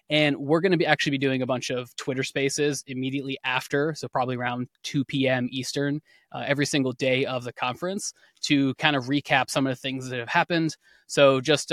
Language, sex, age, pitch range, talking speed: English, male, 20-39, 135-155 Hz, 210 wpm